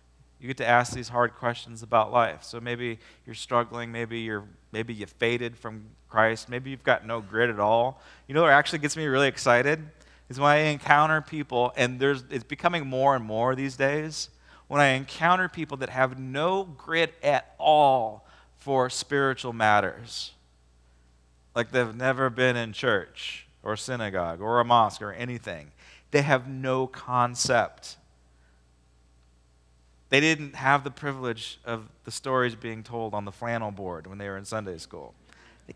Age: 30-49